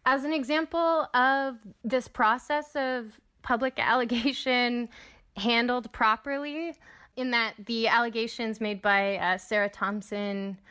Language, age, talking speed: English, 20-39, 110 wpm